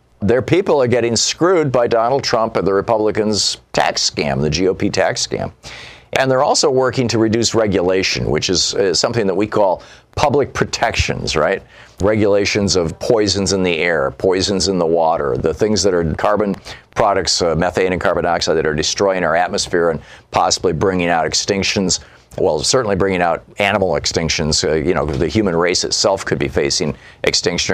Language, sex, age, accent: English, male, 50-69, American